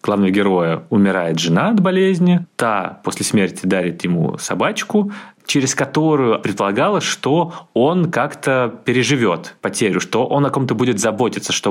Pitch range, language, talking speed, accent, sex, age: 110-145 Hz, Russian, 140 wpm, native, male, 20-39